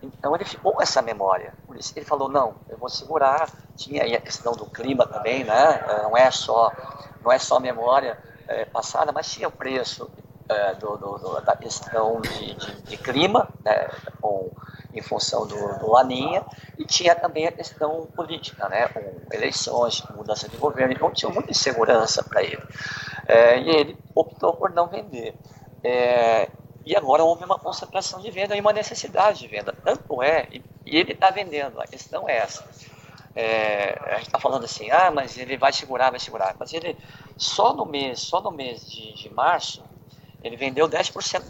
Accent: Brazilian